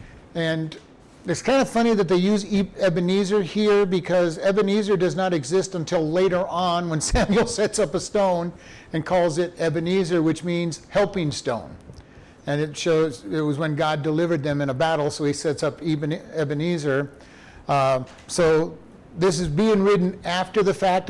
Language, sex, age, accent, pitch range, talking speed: English, male, 50-69, American, 150-190 Hz, 165 wpm